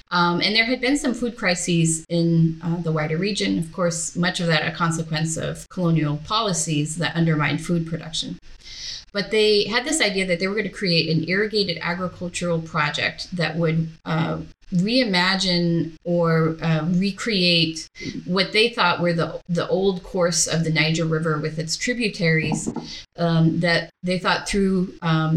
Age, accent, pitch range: 30-49, American, 160-180 Hz